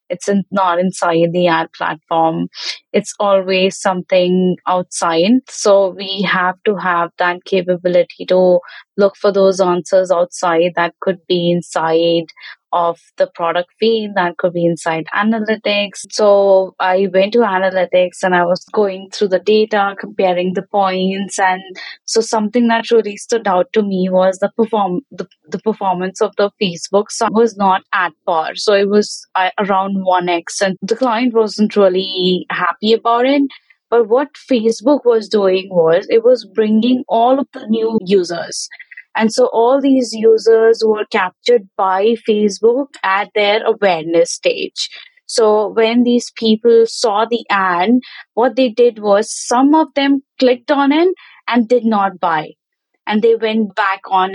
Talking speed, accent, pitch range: 155 wpm, Indian, 185-235 Hz